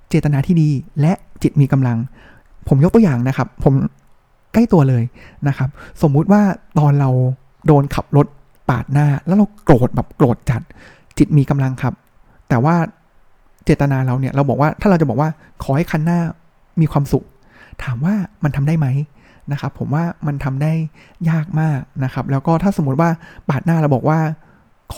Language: Thai